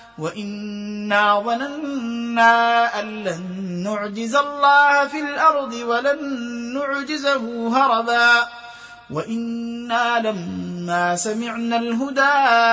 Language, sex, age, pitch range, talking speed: Arabic, male, 30-49, 235-295 Hz, 70 wpm